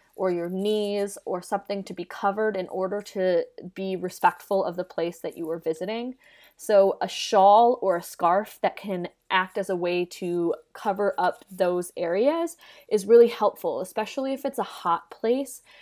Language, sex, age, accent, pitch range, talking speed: English, female, 20-39, American, 185-235 Hz, 175 wpm